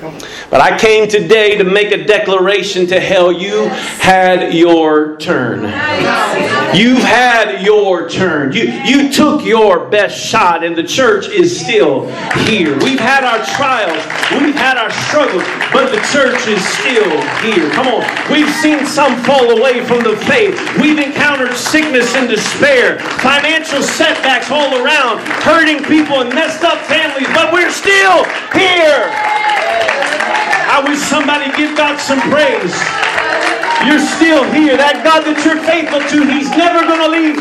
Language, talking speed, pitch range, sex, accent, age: English, 150 wpm, 235-315 Hz, male, American, 40-59